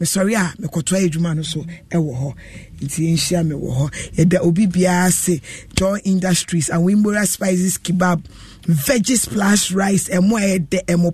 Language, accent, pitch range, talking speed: English, Nigerian, 165-200 Hz, 140 wpm